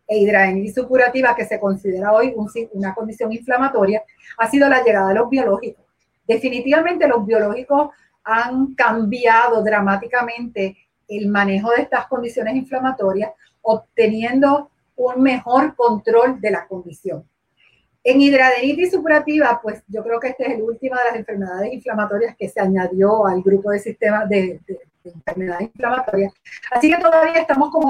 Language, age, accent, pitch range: Spanish, 40-59, American, 210-260 Hz